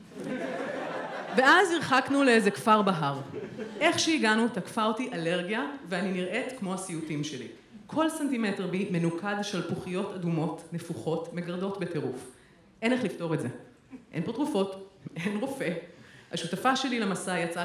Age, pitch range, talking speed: 30-49, 175-255 Hz, 135 wpm